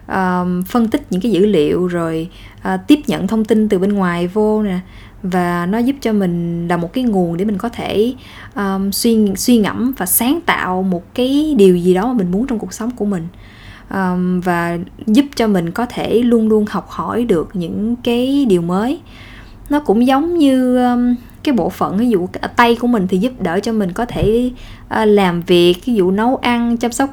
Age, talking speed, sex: 20-39, 210 wpm, female